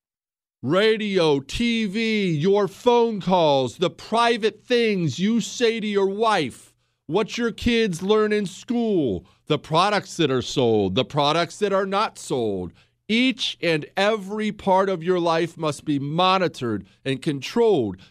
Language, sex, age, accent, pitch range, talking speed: English, male, 40-59, American, 140-205 Hz, 140 wpm